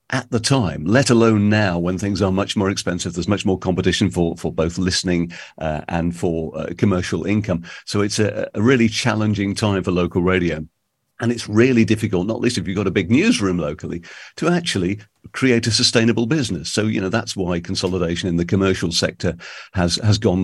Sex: male